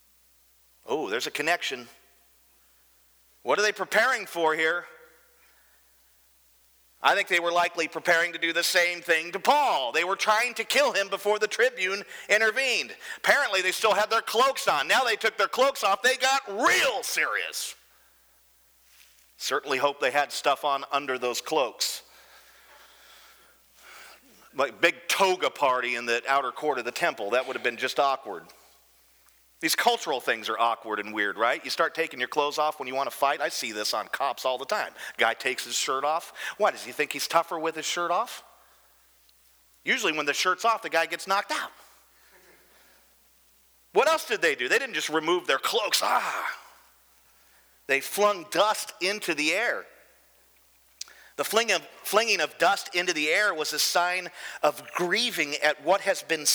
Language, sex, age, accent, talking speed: English, male, 40-59, American, 175 wpm